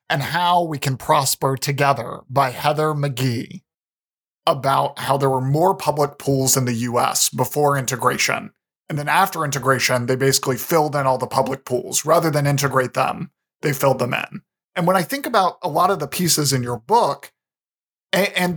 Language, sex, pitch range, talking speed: English, male, 135-170 Hz, 180 wpm